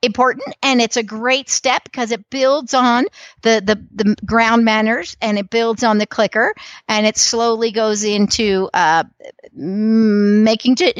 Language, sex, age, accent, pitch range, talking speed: English, female, 50-69, American, 210-270 Hz, 155 wpm